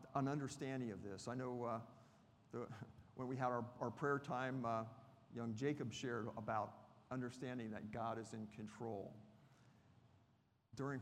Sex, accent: male, American